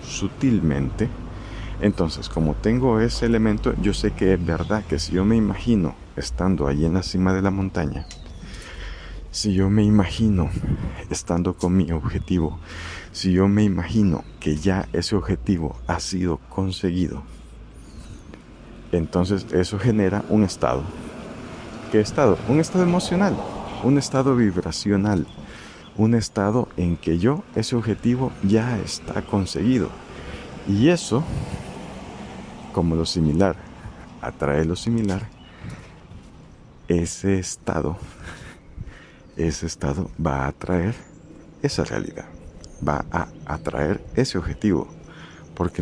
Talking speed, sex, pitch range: 115 wpm, male, 80-110 Hz